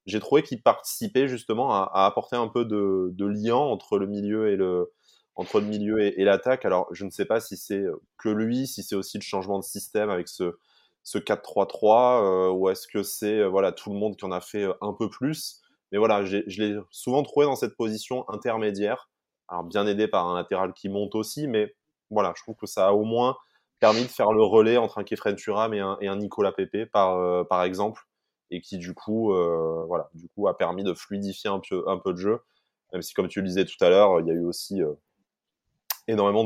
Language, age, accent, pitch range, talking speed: French, 20-39, French, 95-110 Hz, 235 wpm